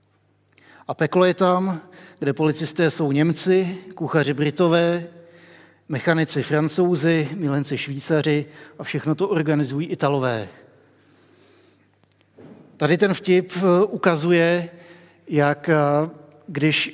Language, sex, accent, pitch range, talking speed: Czech, male, native, 145-170 Hz, 90 wpm